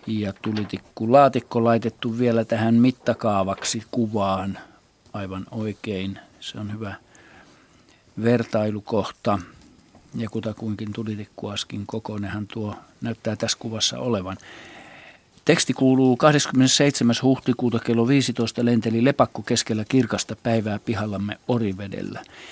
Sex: male